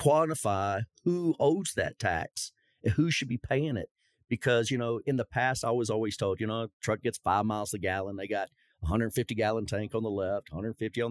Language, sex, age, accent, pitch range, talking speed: English, male, 40-59, American, 110-145 Hz, 215 wpm